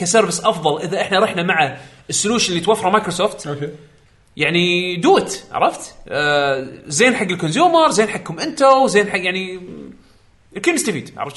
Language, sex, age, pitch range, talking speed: Arabic, male, 30-49, 140-200 Hz, 150 wpm